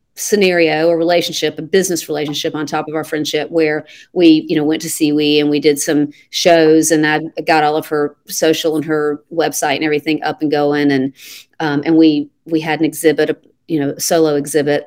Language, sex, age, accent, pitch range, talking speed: English, female, 40-59, American, 150-170 Hz, 205 wpm